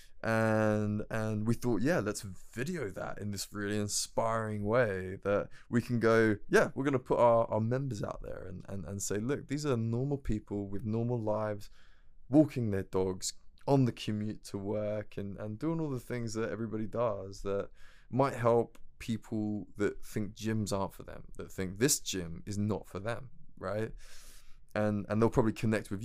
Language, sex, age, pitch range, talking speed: English, male, 20-39, 100-115 Hz, 185 wpm